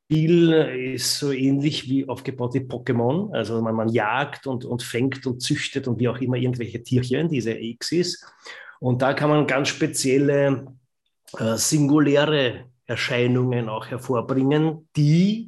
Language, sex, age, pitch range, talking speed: German, male, 30-49, 120-140 Hz, 145 wpm